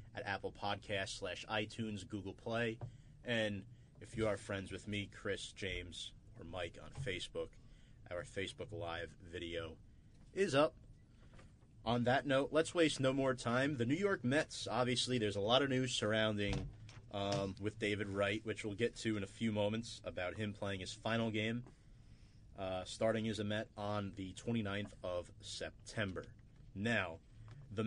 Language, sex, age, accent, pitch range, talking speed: English, male, 30-49, American, 100-120 Hz, 160 wpm